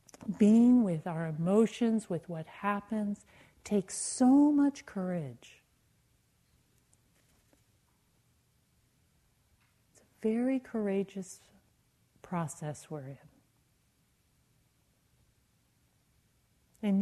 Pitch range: 160-220 Hz